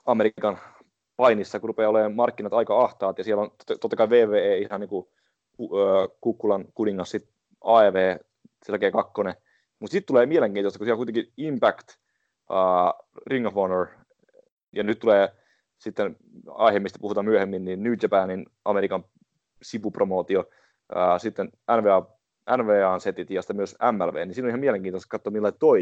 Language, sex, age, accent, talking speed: English, male, 30-49, Finnish, 140 wpm